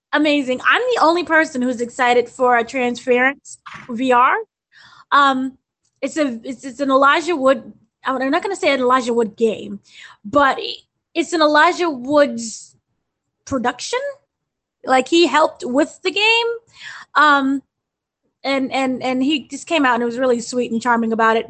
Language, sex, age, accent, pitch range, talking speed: English, female, 20-39, American, 235-295 Hz, 160 wpm